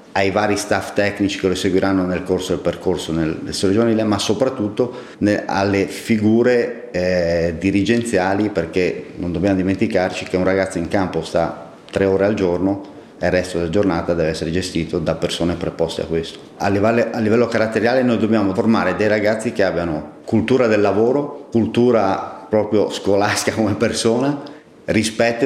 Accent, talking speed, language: native, 160 wpm, Italian